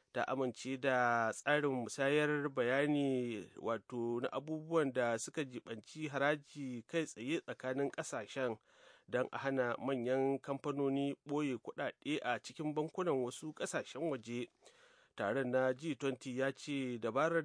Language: English